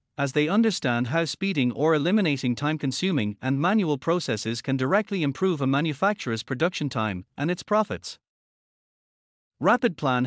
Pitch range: 125-180 Hz